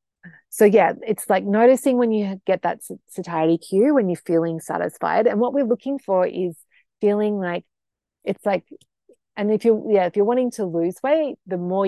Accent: Australian